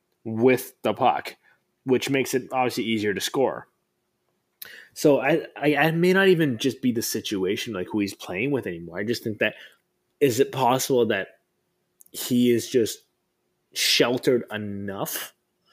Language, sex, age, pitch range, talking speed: English, male, 20-39, 115-140 Hz, 155 wpm